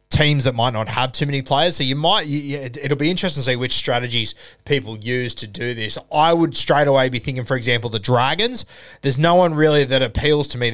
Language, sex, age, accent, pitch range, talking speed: English, male, 20-39, Australian, 125-155 Hz, 230 wpm